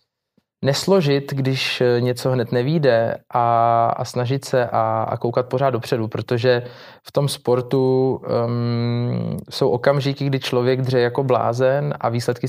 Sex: male